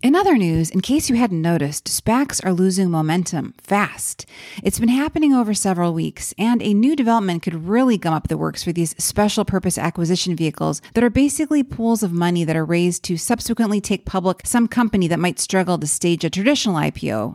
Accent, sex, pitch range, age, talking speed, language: American, female, 175-230 Hz, 30-49, 200 wpm, English